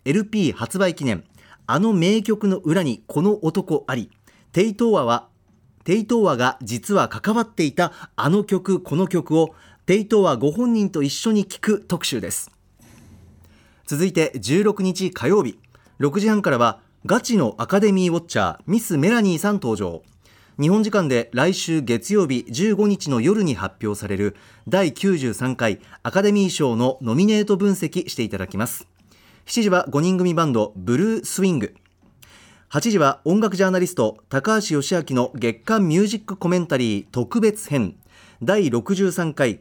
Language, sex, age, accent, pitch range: Japanese, male, 40-59, native, 120-200 Hz